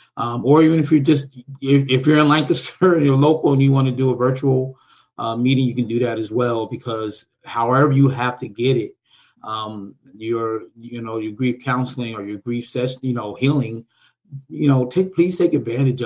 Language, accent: English, American